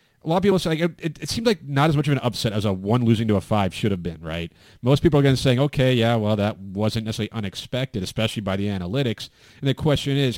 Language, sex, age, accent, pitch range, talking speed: English, male, 30-49, American, 105-140 Hz, 270 wpm